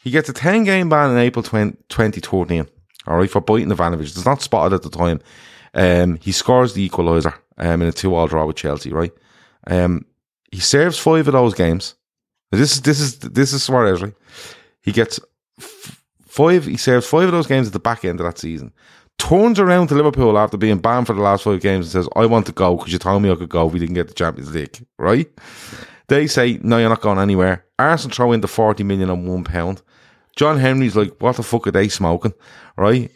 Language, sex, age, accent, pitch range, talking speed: English, male, 30-49, Irish, 90-120 Hz, 230 wpm